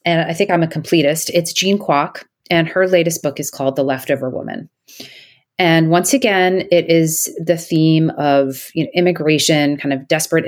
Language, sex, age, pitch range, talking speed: English, female, 30-49, 135-175 Hz, 170 wpm